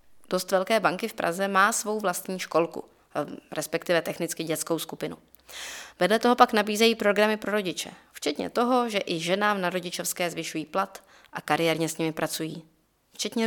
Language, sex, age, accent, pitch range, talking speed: Czech, female, 20-39, native, 175-220 Hz, 155 wpm